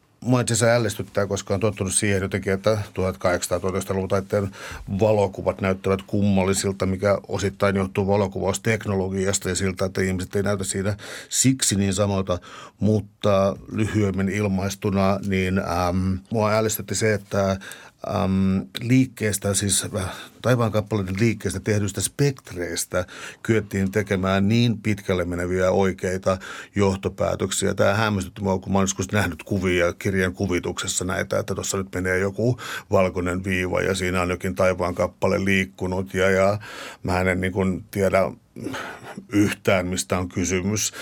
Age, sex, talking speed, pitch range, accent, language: 60-79, male, 125 wpm, 95-105 Hz, native, Finnish